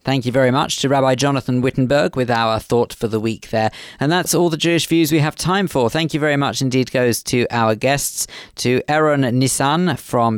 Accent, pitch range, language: British, 115-140 Hz, English